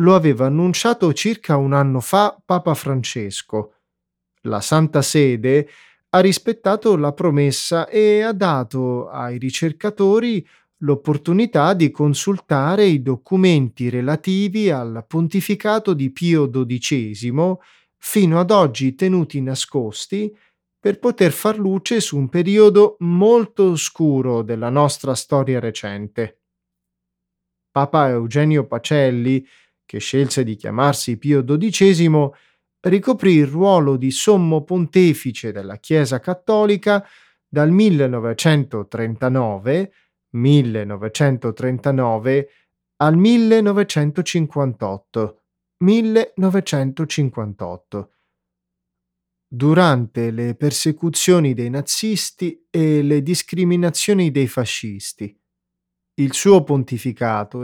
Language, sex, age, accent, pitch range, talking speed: Italian, male, 30-49, native, 125-185 Hz, 90 wpm